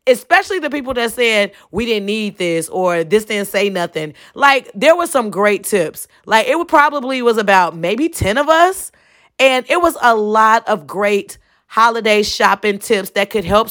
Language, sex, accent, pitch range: English, female, American, 190-240 Hz